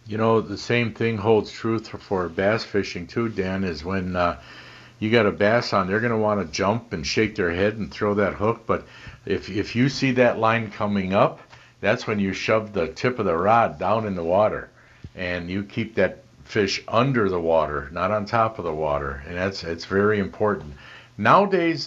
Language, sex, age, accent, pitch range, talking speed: English, male, 60-79, American, 95-120 Hz, 210 wpm